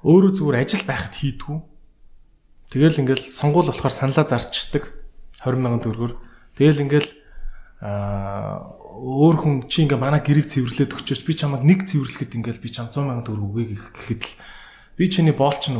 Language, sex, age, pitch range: Korean, male, 20-39, 120-155 Hz